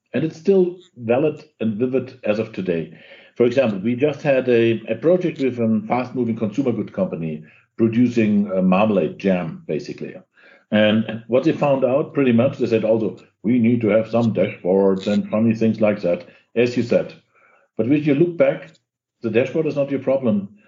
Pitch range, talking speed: 110-135 Hz, 185 wpm